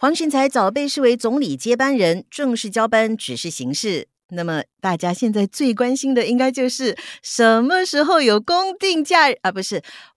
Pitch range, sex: 185-285 Hz, female